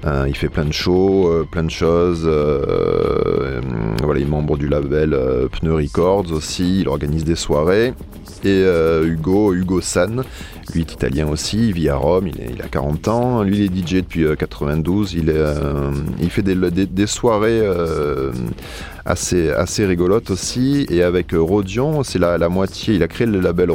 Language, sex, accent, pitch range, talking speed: French, male, French, 70-90 Hz, 195 wpm